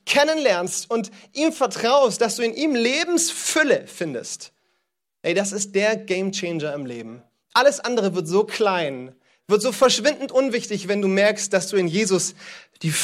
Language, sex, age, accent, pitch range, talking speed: German, male, 30-49, German, 165-245 Hz, 155 wpm